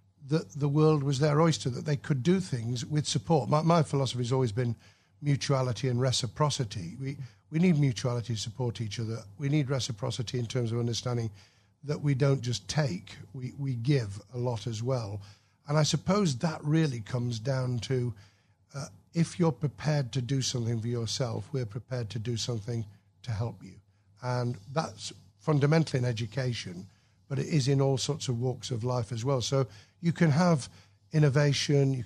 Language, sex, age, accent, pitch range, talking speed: English, male, 50-69, British, 115-140 Hz, 180 wpm